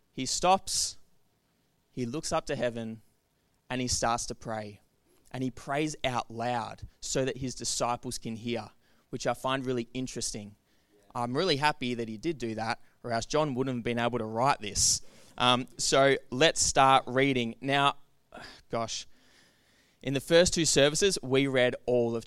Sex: male